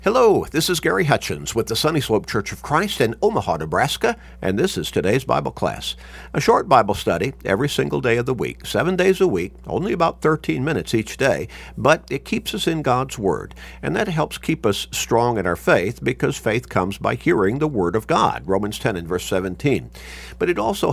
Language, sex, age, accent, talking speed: English, male, 50-69, American, 210 wpm